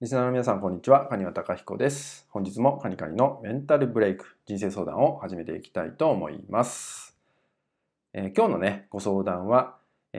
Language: Japanese